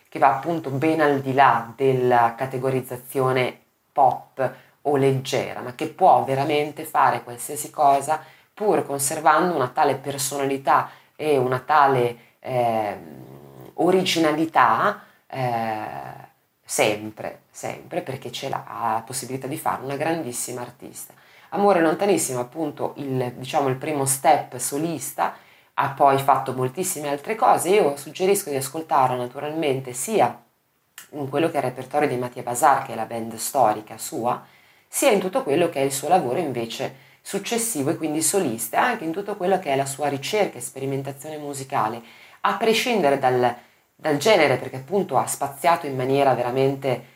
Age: 20-39